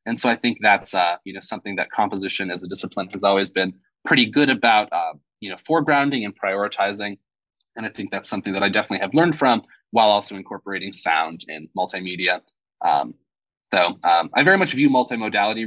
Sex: male